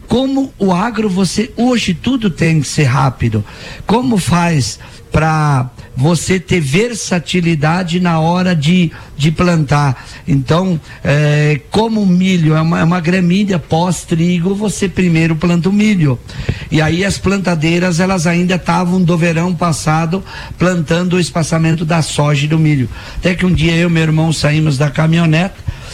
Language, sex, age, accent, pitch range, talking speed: Portuguese, male, 50-69, Brazilian, 150-190 Hz, 150 wpm